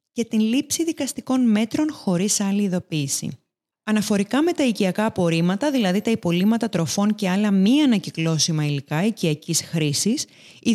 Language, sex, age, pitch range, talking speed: Greek, female, 30-49, 175-255 Hz, 140 wpm